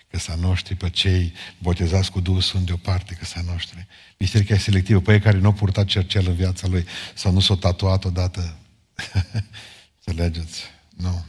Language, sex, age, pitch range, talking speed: Romanian, male, 50-69, 90-100 Hz, 185 wpm